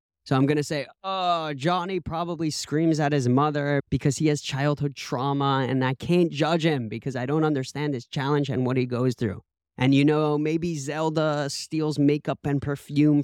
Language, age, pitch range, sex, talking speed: English, 30-49, 130-150 Hz, male, 190 wpm